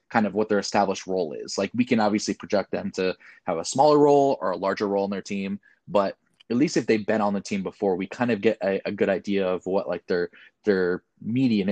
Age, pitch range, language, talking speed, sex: 20-39, 95-115 Hz, English, 250 wpm, male